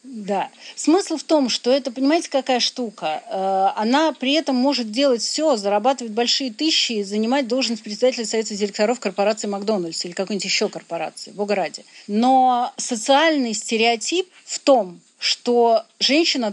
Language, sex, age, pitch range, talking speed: Russian, female, 40-59, 205-270 Hz, 140 wpm